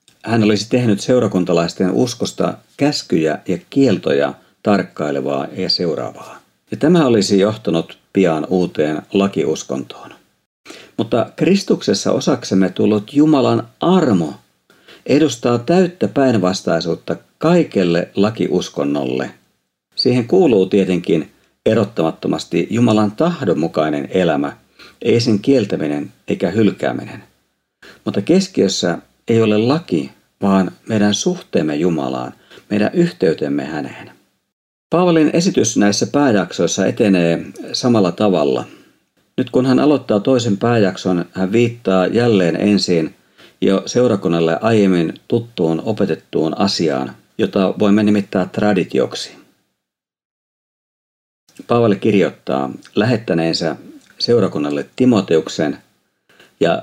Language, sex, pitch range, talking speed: Finnish, male, 85-120 Hz, 90 wpm